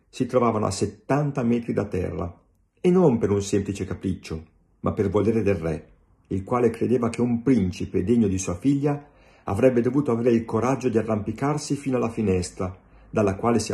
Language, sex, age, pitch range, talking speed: Italian, male, 50-69, 95-120 Hz, 180 wpm